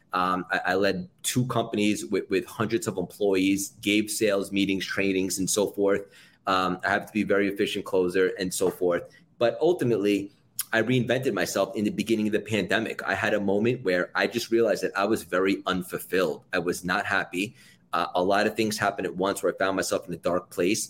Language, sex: English, male